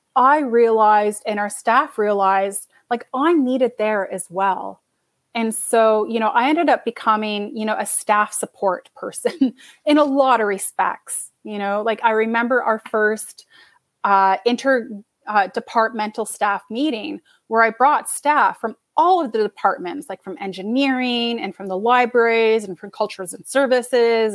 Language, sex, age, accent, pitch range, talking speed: English, female, 30-49, American, 205-250 Hz, 160 wpm